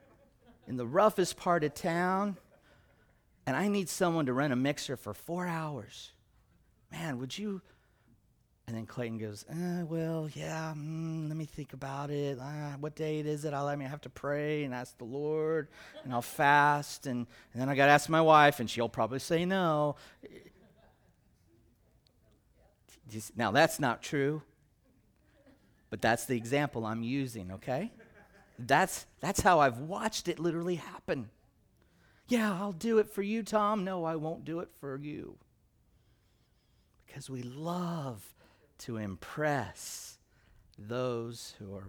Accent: American